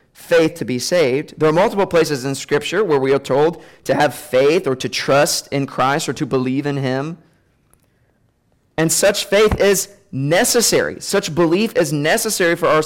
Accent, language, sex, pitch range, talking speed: American, English, male, 140-200 Hz, 175 wpm